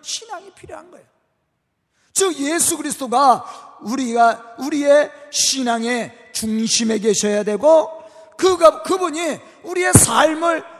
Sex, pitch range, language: male, 220-335 Hz, Korean